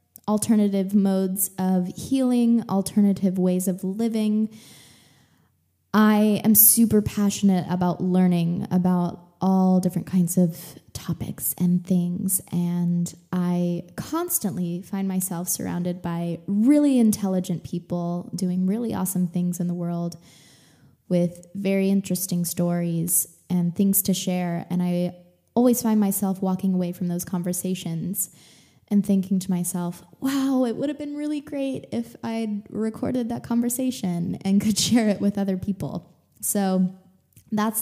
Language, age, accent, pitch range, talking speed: English, 20-39, American, 180-215 Hz, 130 wpm